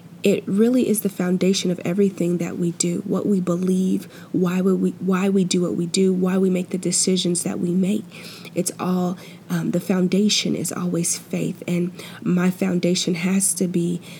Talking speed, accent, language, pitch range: 185 wpm, American, English, 175-195 Hz